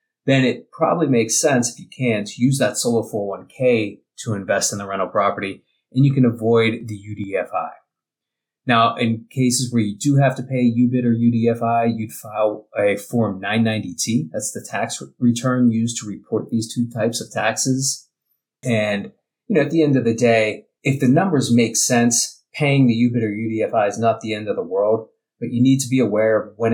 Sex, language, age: male, English, 30-49